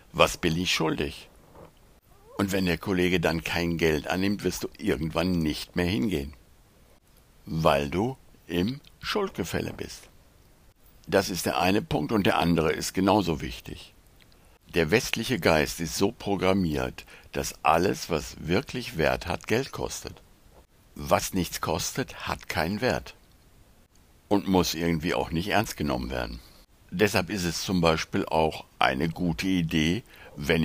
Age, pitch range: 60-79, 80-95 Hz